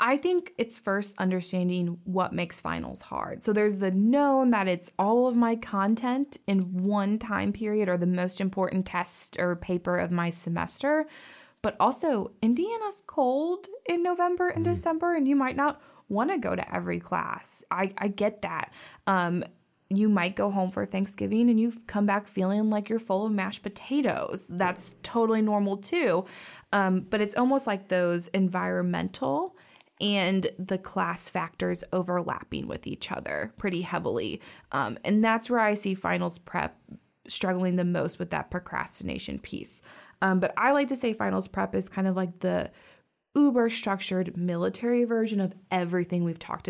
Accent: American